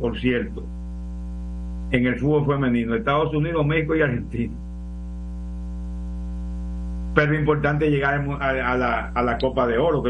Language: Spanish